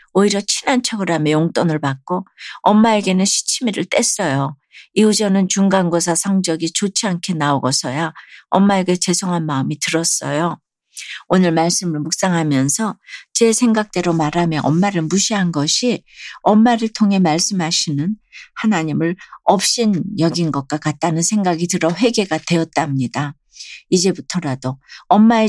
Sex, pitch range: female, 155-205 Hz